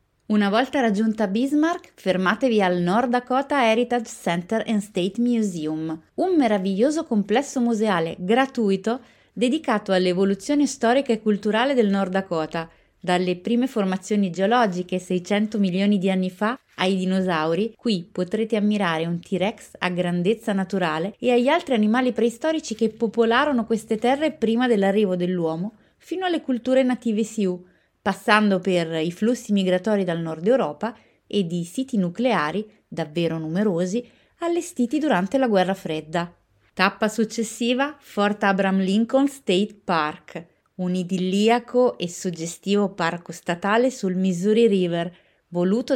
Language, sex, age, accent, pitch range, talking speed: Italian, female, 30-49, native, 185-240 Hz, 130 wpm